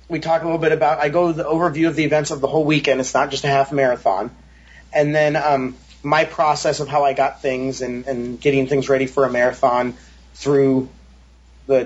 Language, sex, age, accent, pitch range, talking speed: English, male, 30-49, American, 135-160 Hz, 220 wpm